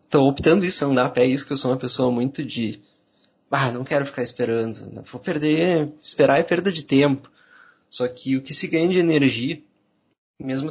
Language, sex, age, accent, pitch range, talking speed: Portuguese, male, 20-39, Brazilian, 120-140 Hz, 200 wpm